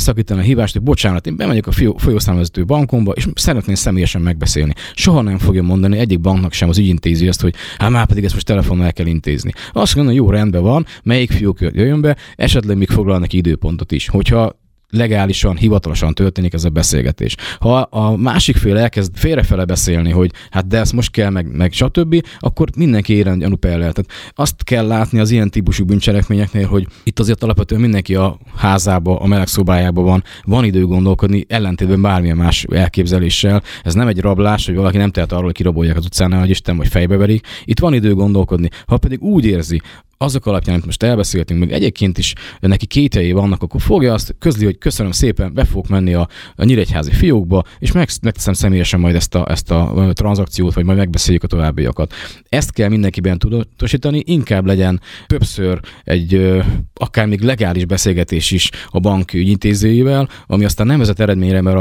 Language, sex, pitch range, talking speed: Hungarian, male, 90-110 Hz, 185 wpm